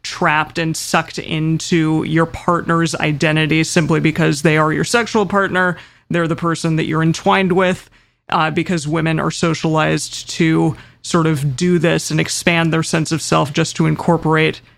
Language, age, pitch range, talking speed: English, 30-49, 155-175 Hz, 160 wpm